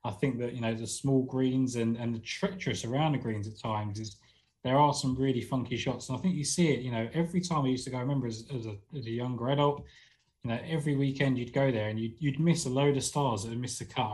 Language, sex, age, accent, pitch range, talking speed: English, male, 20-39, British, 120-140 Hz, 280 wpm